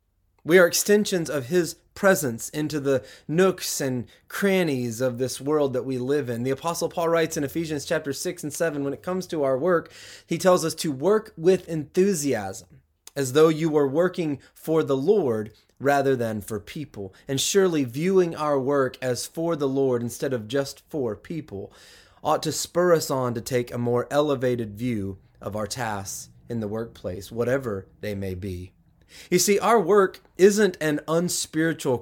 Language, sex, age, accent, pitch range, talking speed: English, male, 30-49, American, 120-165 Hz, 180 wpm